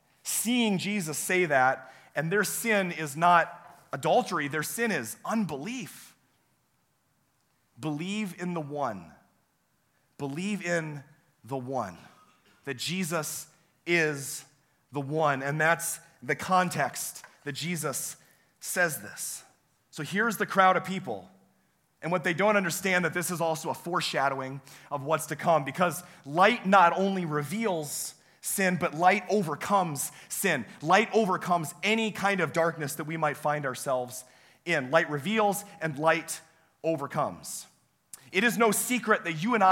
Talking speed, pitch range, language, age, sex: 135 wpm, 150-195 Hz, English, 30-49, male